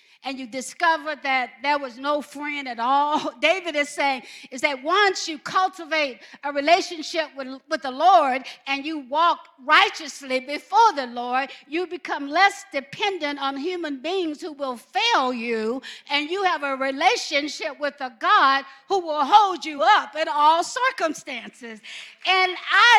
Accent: American